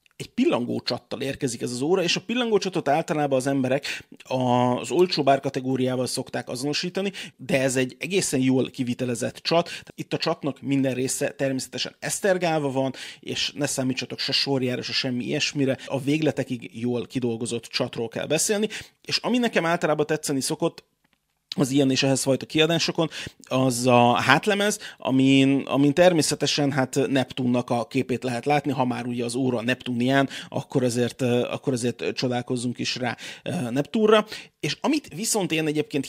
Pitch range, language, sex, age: 130-155 Hz, Hungarian, male, 30-49